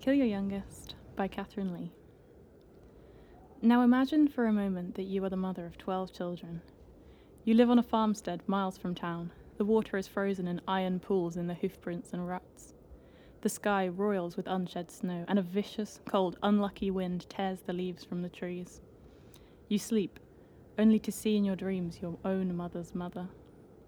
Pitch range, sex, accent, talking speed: 180-215 Hz, female, British, 175 wpm